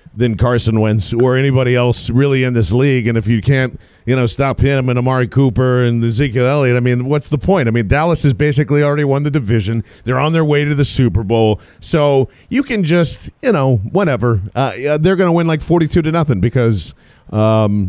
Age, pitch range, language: 40-59, 115-145 Hz, English